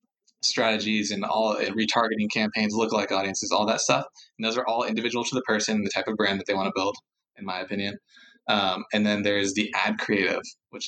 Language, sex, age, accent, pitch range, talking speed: English, male, 20-39, American, 105-125 Hz, 220 wpm